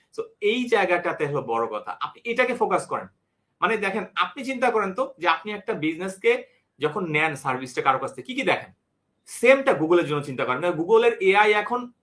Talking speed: 130 wpm